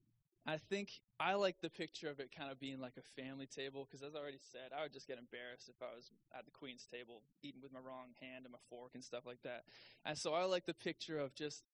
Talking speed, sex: 265 wpm, male